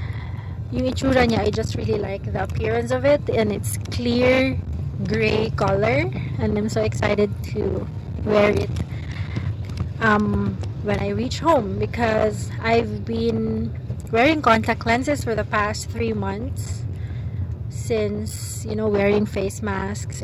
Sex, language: female, English